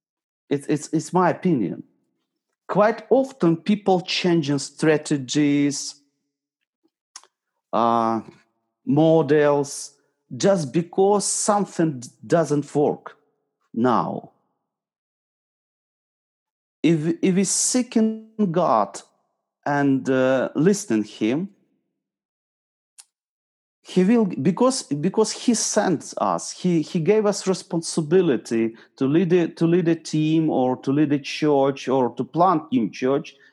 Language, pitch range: English, 145-195 Hz